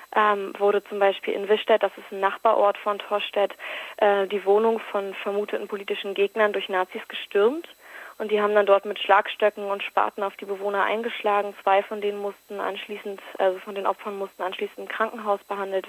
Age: 20-39